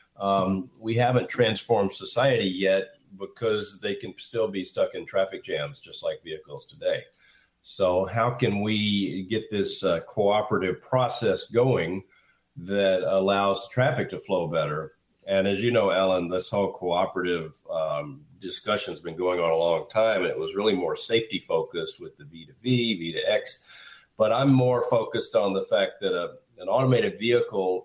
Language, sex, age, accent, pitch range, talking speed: English, male, 40-59, American, 95-130 Hz, 155 wpm